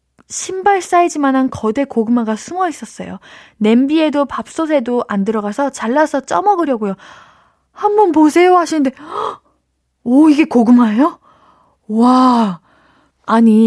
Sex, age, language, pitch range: female, 20-39, Korean, 205-285 Hz